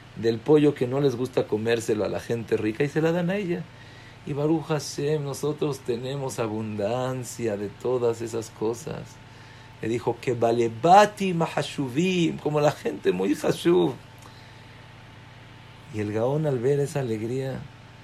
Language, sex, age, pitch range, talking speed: English, male, 50-69, 115-145 Hz, 150 wpm